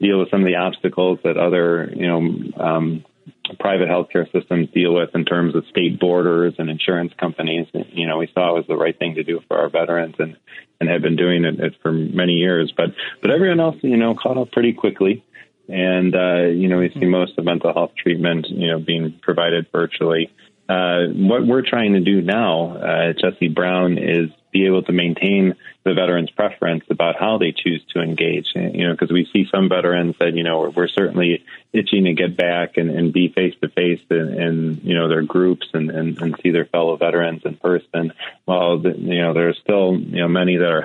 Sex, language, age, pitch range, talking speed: male, English, 30-49, 85-90 Hz, 215 wpm